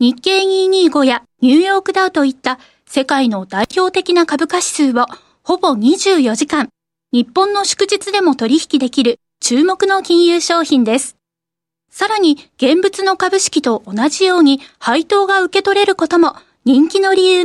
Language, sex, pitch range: Japanese, female, 245-355 Hz